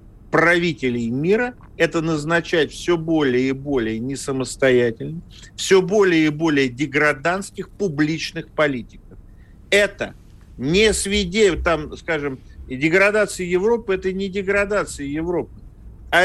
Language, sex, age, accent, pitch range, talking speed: Russian, male, 50-69, native, 125-185 Hz, 105 wpm